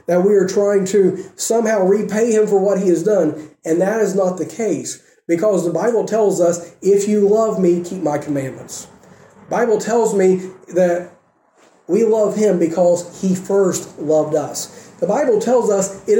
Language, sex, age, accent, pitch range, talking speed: English, male, 40-59, American, 175-225 Hz, 180 wpm